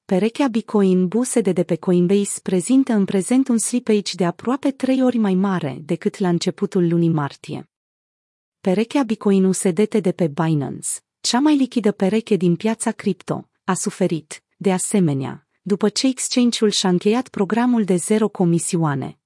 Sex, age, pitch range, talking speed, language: female, 30-49, 180-225 Hz, 155 wpm, Romanian